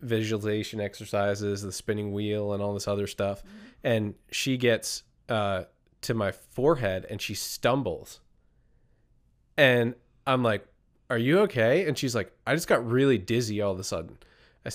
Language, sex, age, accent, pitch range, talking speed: English, male, 20-39, American, 105-135 Hz, 160 wpm